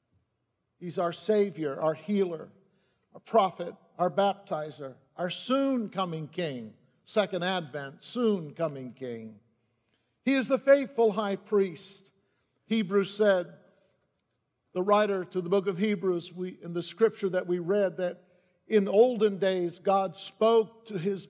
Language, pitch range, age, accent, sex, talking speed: English, 175-210 Hz, 50-69, American, male, 130 wpm